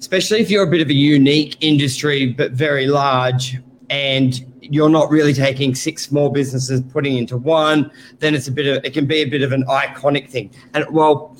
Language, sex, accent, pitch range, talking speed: English, male, Australian, 135-155 Hz, 210 wpm